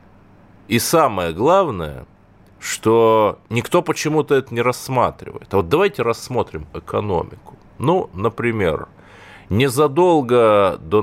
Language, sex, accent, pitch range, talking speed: Russian, male, native, 90-120 Hz, 100 wpm